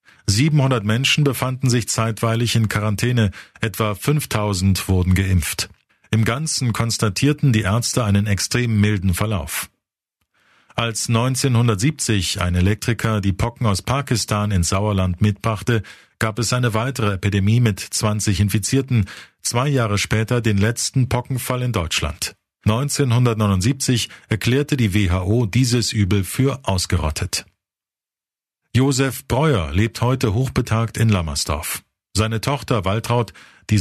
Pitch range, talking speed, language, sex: 100-120 Hz, 115 wpm, German, male